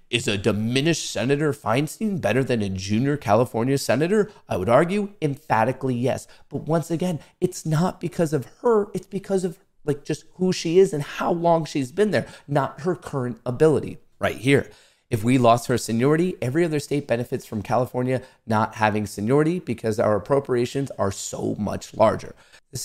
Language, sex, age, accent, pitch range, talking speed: English, male, 30-49, American, 110-160 Hz, 175 wpm